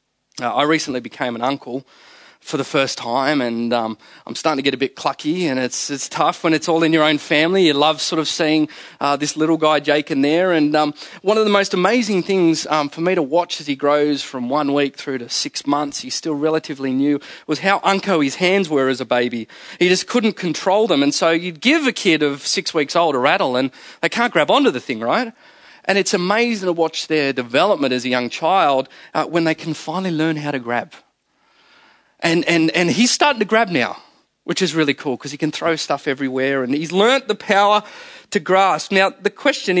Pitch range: 145-190 Hz